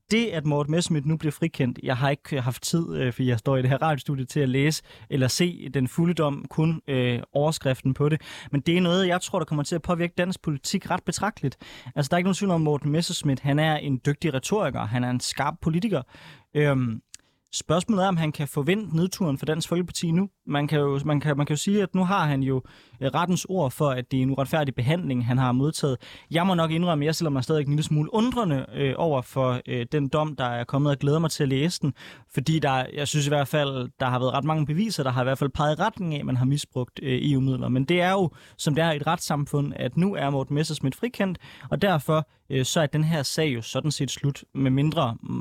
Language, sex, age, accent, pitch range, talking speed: Danish, male, 20-39, native, 130-165 Hz, 255 wpm